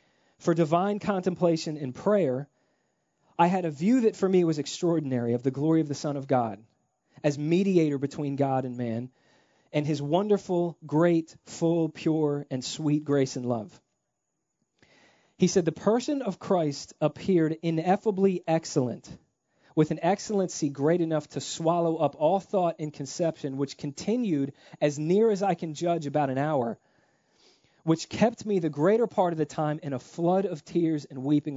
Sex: male